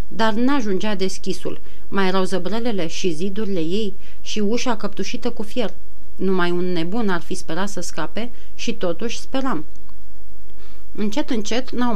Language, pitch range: Romanian, 185-225 Hz